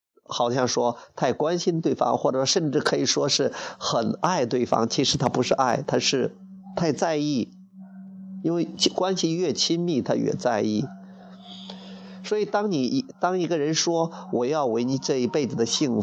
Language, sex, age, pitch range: Chinese, male, 30-49, 125-185 Hz